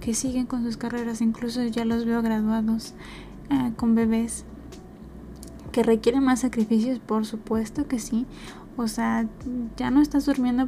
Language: Spanish